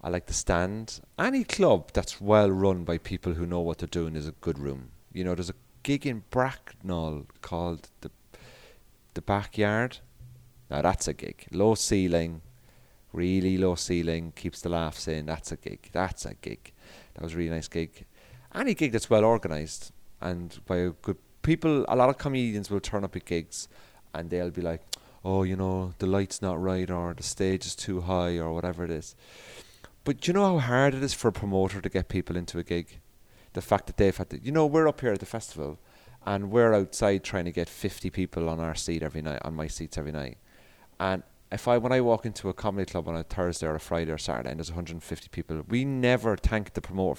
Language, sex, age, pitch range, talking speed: English, male, 30-49, 85-115 Hz, 220 wpm